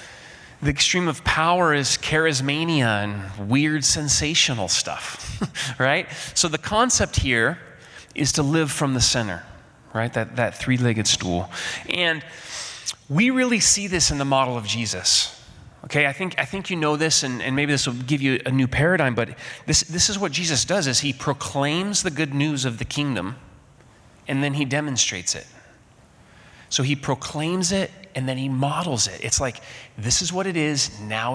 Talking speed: 175 wpm